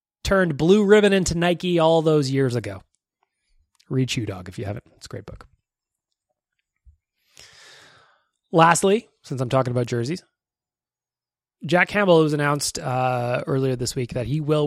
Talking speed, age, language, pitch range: 145 wpm, 30-49, English, 130-175 Hz